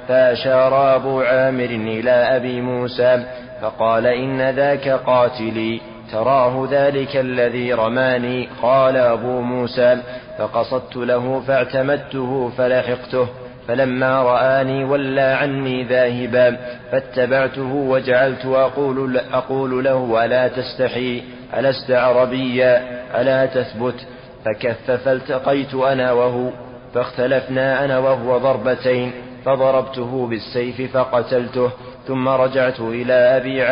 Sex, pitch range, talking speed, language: male, 125-130 Hz, 95 wpm, Arabic